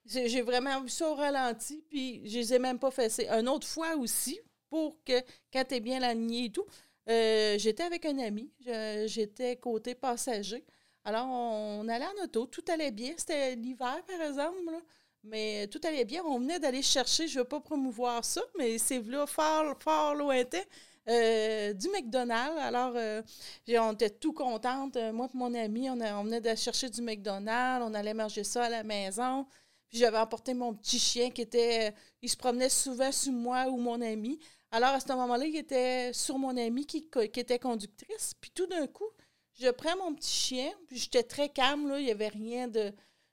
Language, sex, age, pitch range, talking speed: French, female, 40-59, 230-285 Hz, 200 wpm